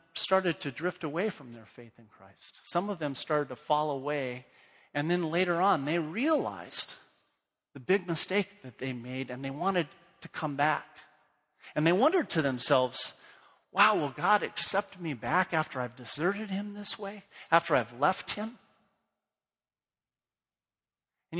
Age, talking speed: 40-59, 155 wpm